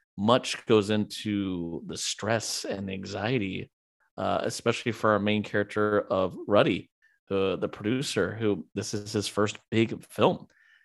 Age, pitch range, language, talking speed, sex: 30-49, 100-115 Hz, English, 140 wpm, male